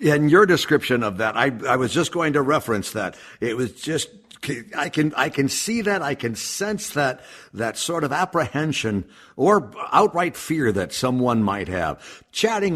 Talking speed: 180 wpm